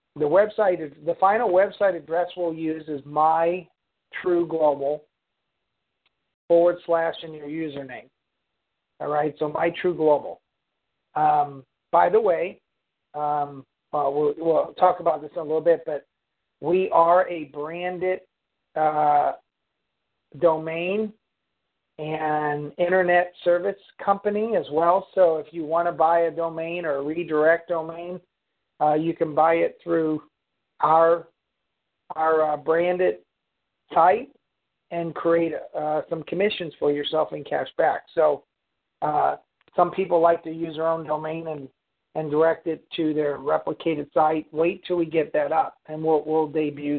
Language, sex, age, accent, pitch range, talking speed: English, male, 50-69, American, 155-175 Hz, 140 wpm